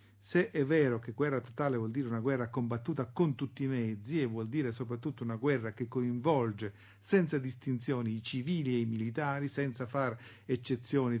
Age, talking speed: 50-69, 175 wpm